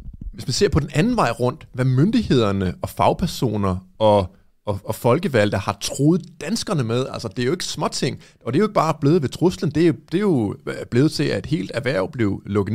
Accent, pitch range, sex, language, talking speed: native, 105-145 Hz, male, Danish, 215 wpm